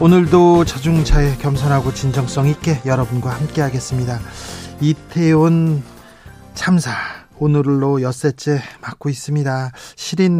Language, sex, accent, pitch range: Korean, male, native, 130-155 Hz